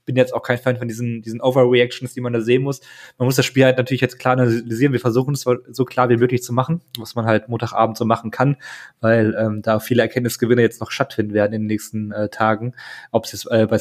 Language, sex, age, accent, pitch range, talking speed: German, male, 20-39, German, 115-130 Hz, 250 wpm